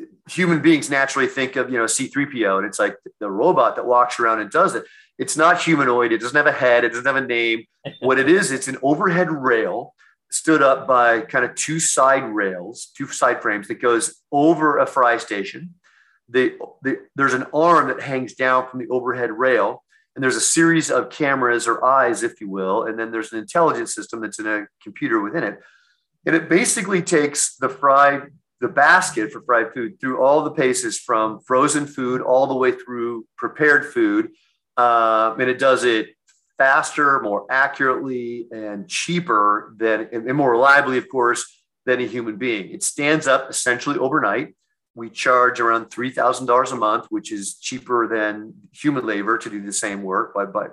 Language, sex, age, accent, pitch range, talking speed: English, male, 40-59, American, 120-150 Hz, 190 wpm